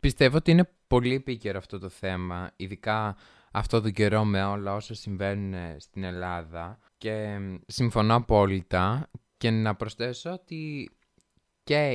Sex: male